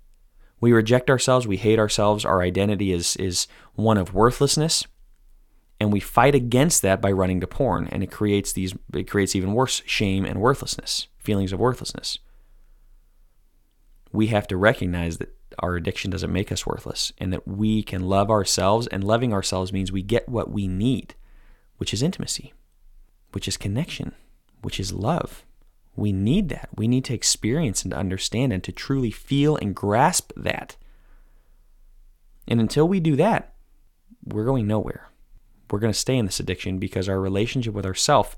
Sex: male